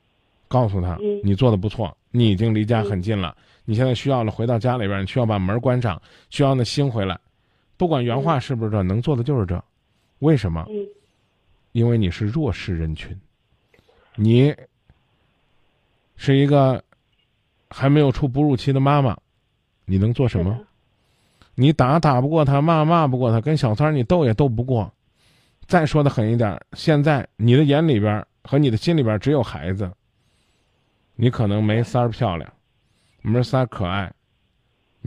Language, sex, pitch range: Chinese, male, 105-135 Hz